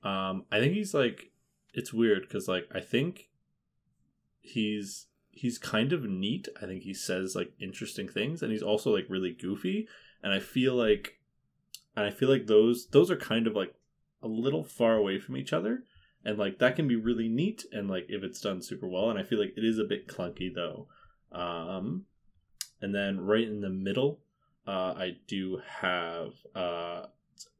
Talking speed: 185 wpm